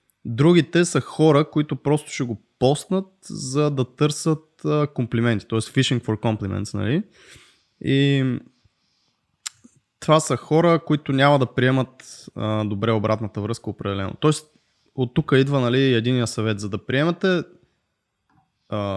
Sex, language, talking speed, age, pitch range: male, Bulgarian, 135 wpm, 20-39, 110-150 Hz